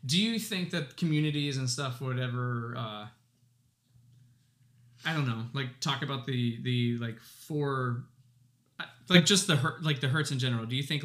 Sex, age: male, 20-39